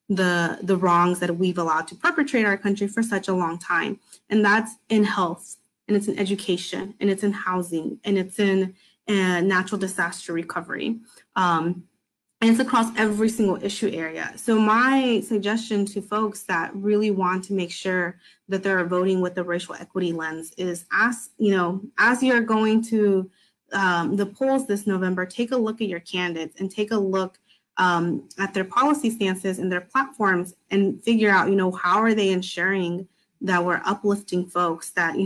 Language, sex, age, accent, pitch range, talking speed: English, female, 20-39, American, 180-210 Hz, 180 wpm